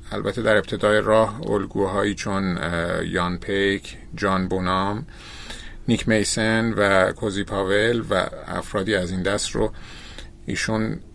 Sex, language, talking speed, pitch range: male, Persian, 120 wpm, 95-115 Hz